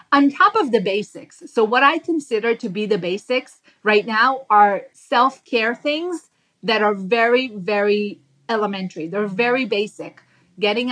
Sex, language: female, English